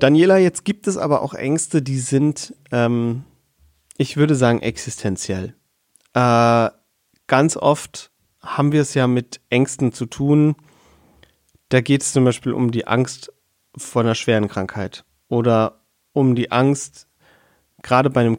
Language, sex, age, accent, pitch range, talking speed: German, male, 30-49, German, 115-140 Hz, 145 wpm